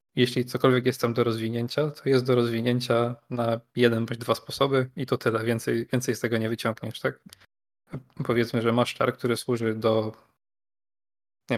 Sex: male